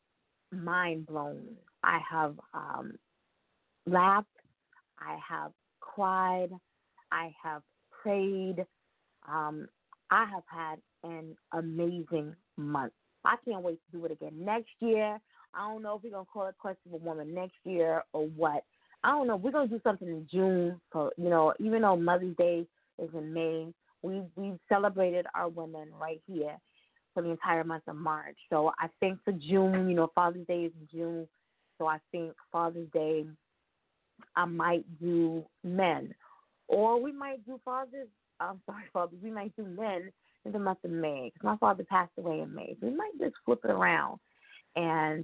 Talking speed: 170 wpm